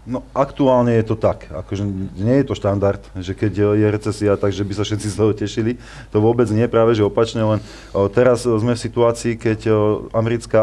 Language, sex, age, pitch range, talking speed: Slovak, male, 30-49, 100-120 Hz, 205 wpm